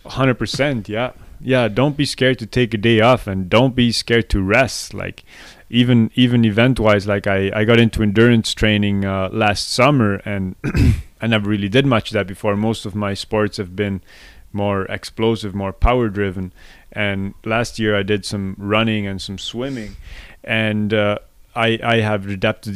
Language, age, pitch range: English, 30-49, 100-115 Hz